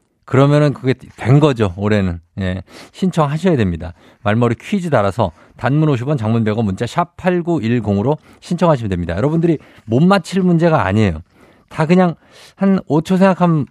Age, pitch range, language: 50-69, 105-155 Hz, Korean